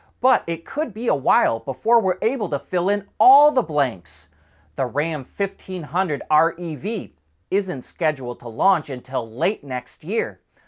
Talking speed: 150 wpm